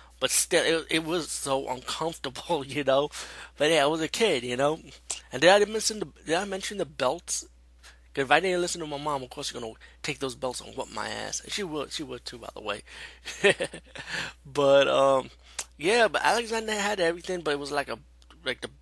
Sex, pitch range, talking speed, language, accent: male, 115-150 Hz, 220 wpm, English, American